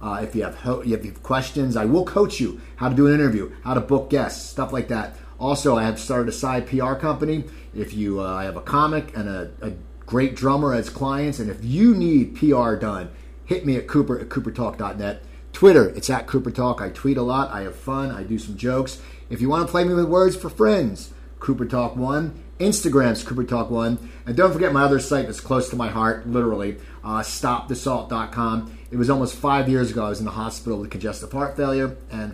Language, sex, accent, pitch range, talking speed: English, male, American, 110-145 Hz, 215 wpm